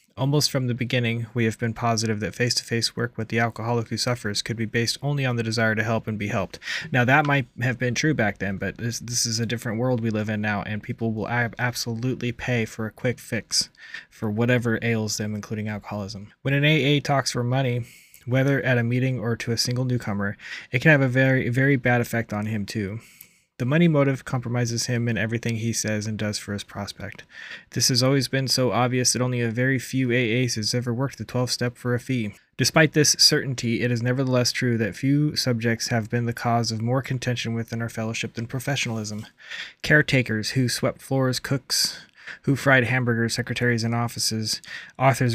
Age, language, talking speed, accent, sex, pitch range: 20-39, English, 210 wpm, American, male, 115-130 Hz